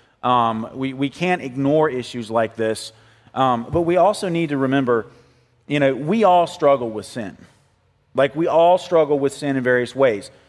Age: 30-49